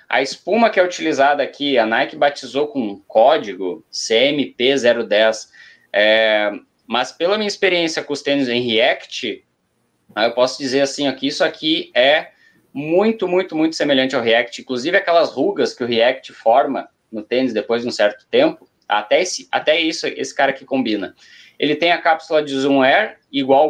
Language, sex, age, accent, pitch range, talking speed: Portuguese, male, 20-39, Brazilian, 120-160 Hz, 160 wpm